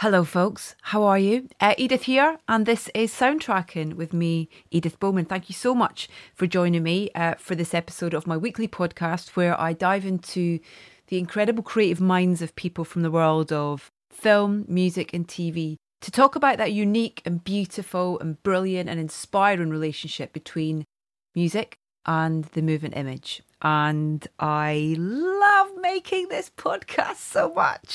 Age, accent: 30-49, British